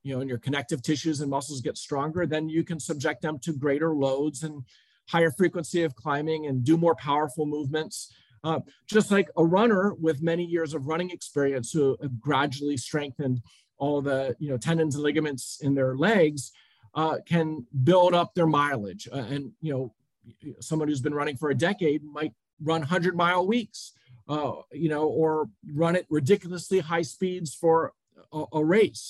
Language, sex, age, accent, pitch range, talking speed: English, male, 40-59, American, 140-170 Hz, 180 wpm